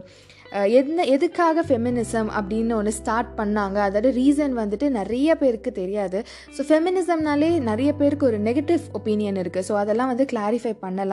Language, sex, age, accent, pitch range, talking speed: Tamil, female, 20-39, native, 210-280 Hz, 135 wpm